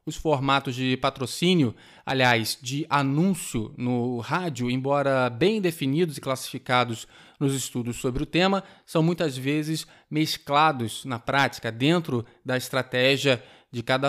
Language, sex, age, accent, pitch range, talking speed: Portuguese, male, 20-39, Brazilian, 130-165 Hz, 130 wpm